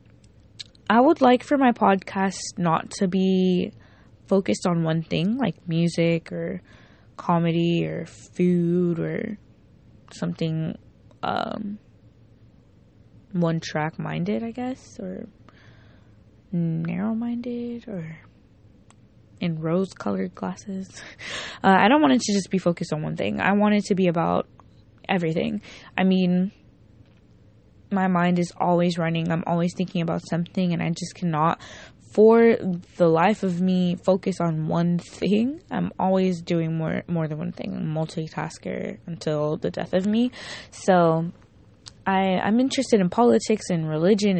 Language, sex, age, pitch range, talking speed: English, female, 20-39, 165-195 Hz, 130 wpm